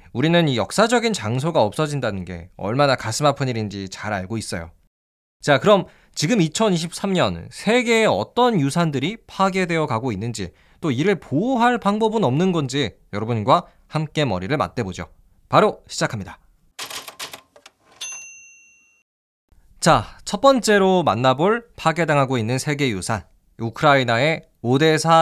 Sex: male